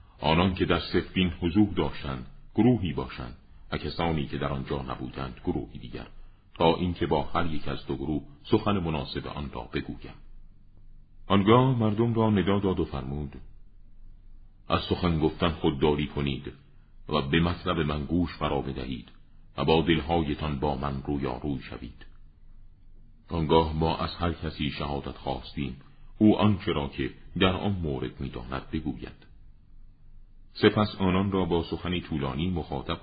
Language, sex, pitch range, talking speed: Persian, male, 70-90 Hz, 145 wpm